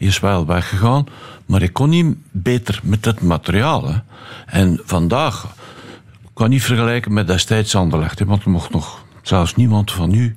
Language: Dutch